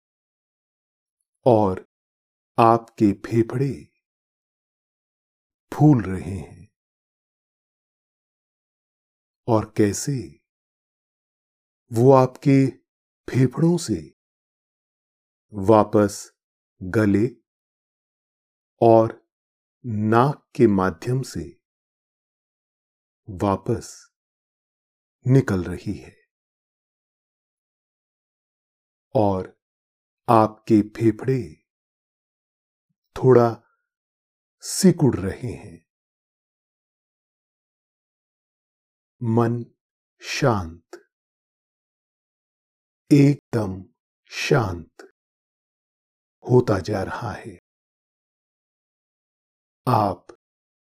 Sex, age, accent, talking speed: male, 50-69, native, 45 wpm